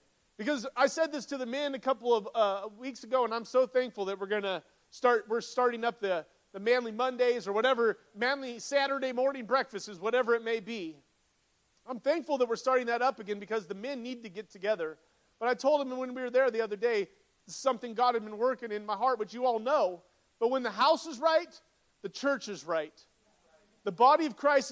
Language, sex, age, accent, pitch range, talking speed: English, male, 40-59, American, 215-265 Hz, 225 wpm